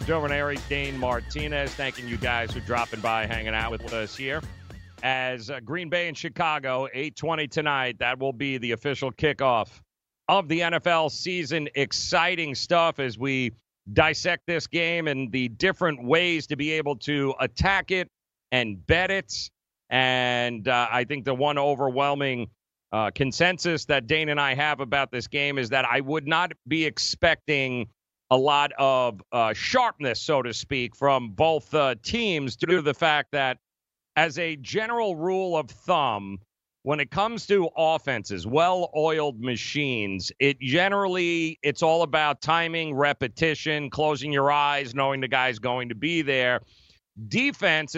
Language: English